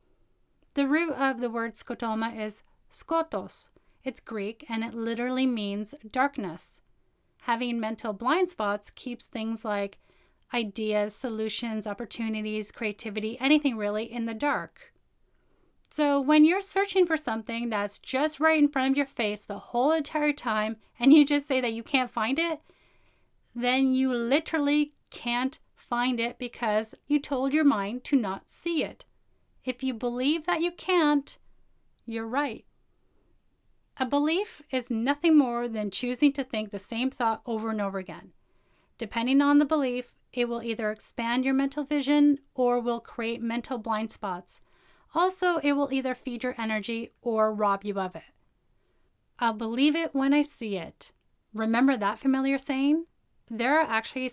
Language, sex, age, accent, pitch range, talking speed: English, female, 10-29, American, 225-285 Hz, 155 wpm